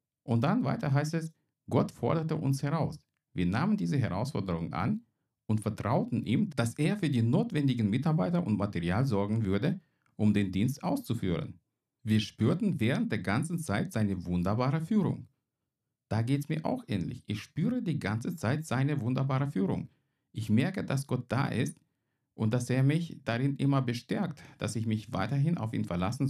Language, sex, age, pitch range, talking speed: German, male, 50-69, 110-150 Hz, 170 wpm